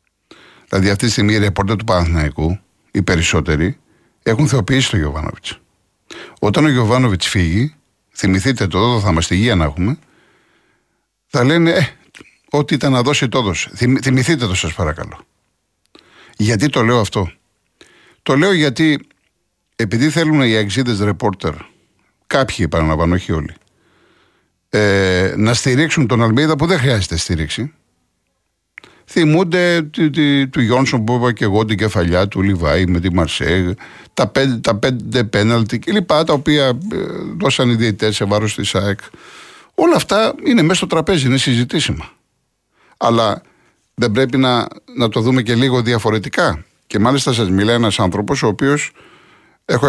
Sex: male